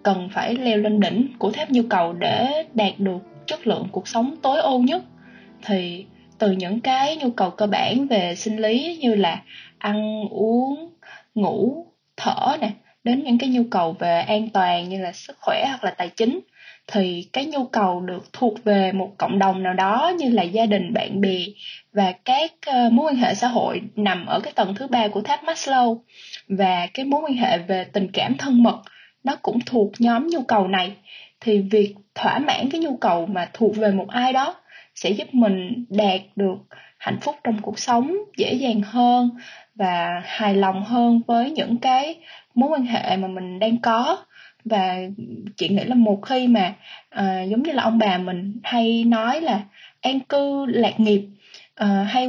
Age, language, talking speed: 20-39, Vietnamese, 190 wpm